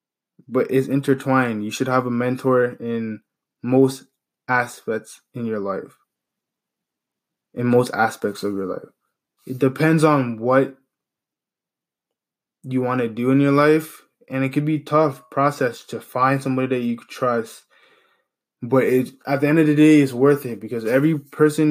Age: 20-39